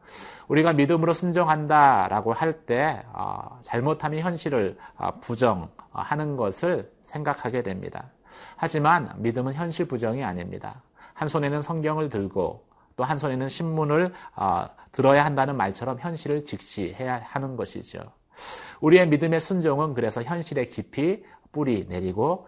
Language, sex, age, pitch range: Korean, male, 40-59, 115-160 Hz